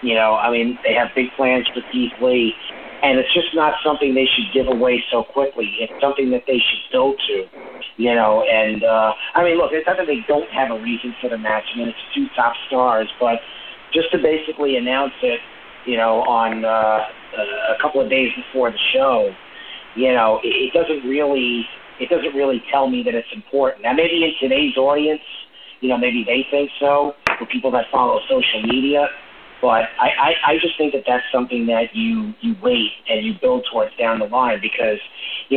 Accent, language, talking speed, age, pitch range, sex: American, English, 210 wpm, 40-59, 125-175 Hz, male